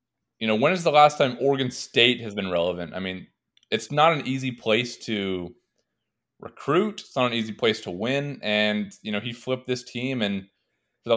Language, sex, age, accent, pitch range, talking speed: English, male, 20-39, American, 95-120 Hz, 205 wpm